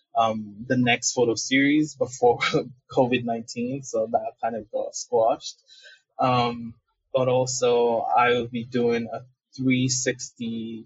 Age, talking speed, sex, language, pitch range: 20-39, 120 wpm, male, English, 120-155 Hz